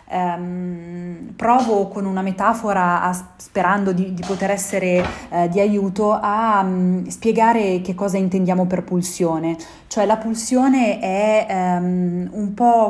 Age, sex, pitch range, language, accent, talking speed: 30-49, female, 180-220 Hz, Italian, native, 135 wpm